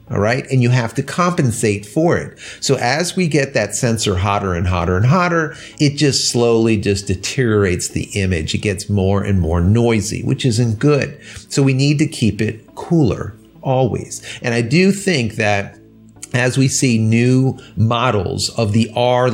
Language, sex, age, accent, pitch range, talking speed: English, male, 40-59, American, 100-140 Hz, 175 wpm